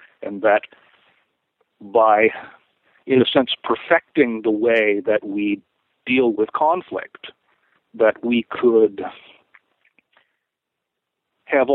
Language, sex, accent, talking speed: English, male, American, 90 wpm